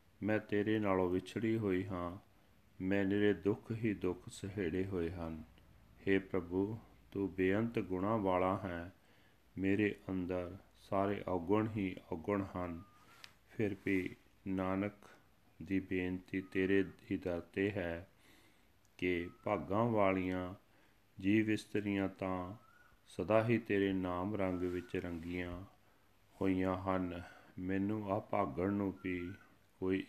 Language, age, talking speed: Punjabi, 40-59, 110 wpm